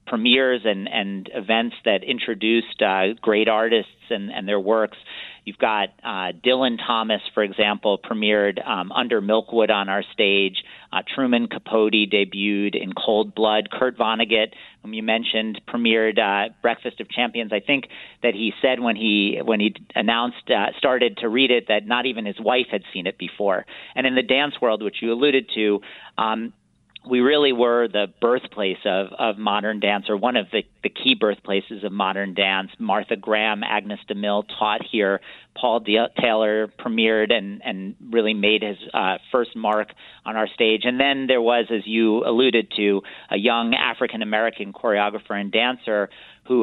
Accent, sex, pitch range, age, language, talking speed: American, male, 105-120 Hz, 40-59, English, 170 wpm